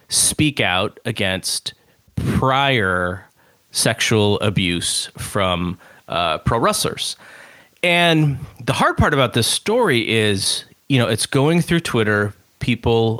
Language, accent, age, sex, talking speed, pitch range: English, American, 30-49, male, 115 wpm, 105-135 Hz